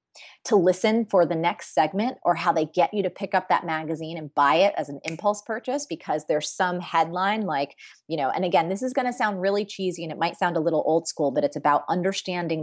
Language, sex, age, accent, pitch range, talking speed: English, female, 30-49, American, 160-210 Hz, 240 wpm